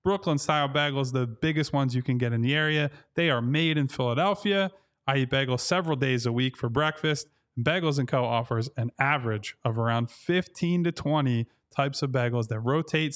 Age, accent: 20-39, American